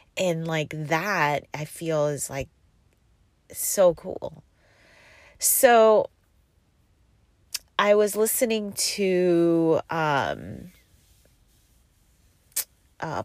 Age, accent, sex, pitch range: 30-49, American, female, 140-170 Hz